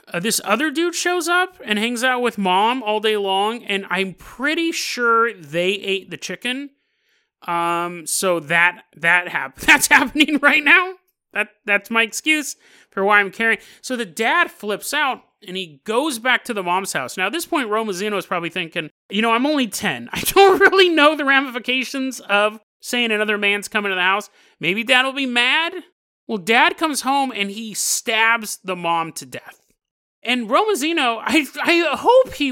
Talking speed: 185 wpm